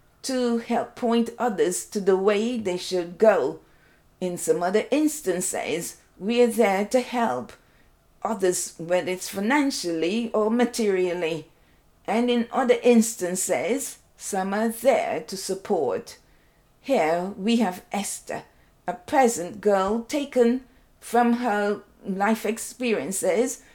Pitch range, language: 185-245 Hz, English